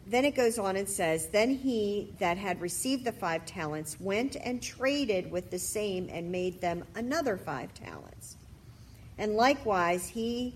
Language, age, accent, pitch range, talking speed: English, 50-69, American, 160-220 Hz, 165 wpm